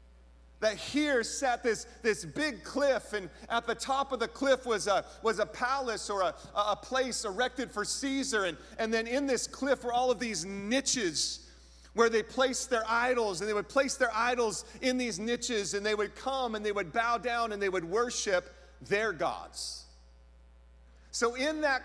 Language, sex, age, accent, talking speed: English, male, 40-59, American, 185 wpm